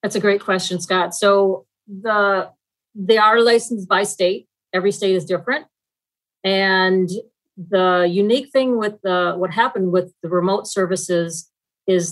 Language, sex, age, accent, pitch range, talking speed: English, female, 40-59, American, 175-200 Hz, 145 wpm